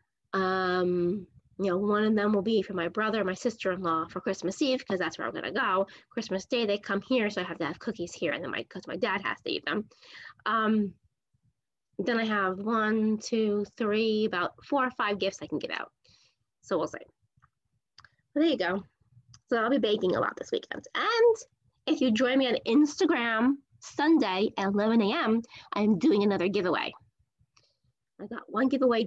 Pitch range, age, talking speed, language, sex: 180-245 Hz, 20-39, 190 wpm, English, female